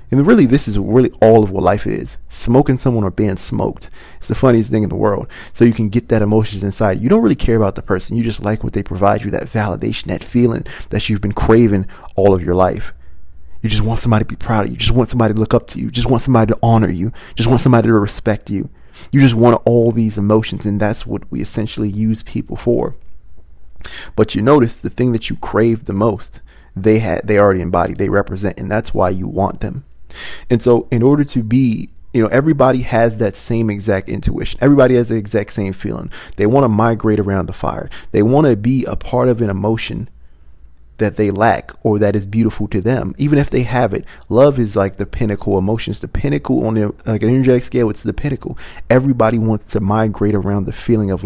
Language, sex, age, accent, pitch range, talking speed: English, male, 30-49, American, 100-115 Hz, 235 wpm